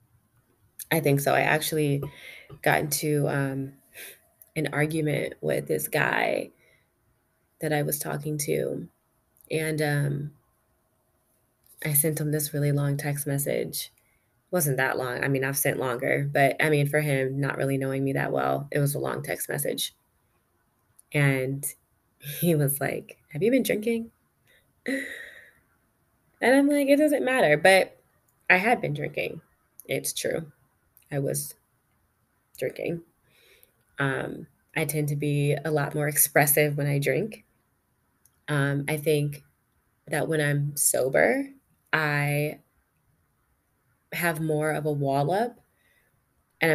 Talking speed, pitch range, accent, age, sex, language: 130 wpm, 135-160 Hz, American, 20-39, female, English